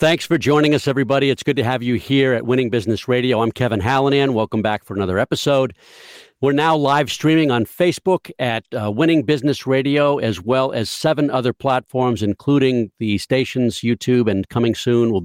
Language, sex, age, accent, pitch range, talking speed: English, male, 50-69, American, 115-150 Hz, 190 wpm